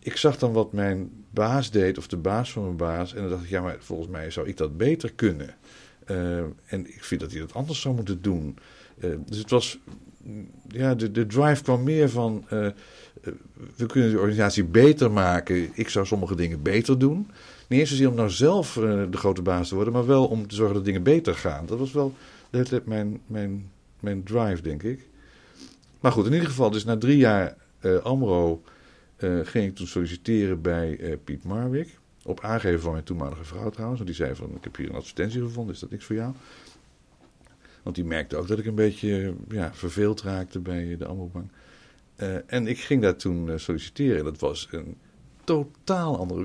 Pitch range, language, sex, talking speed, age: 85-120 Hz, Dutch, male, 210 wpm, 50-69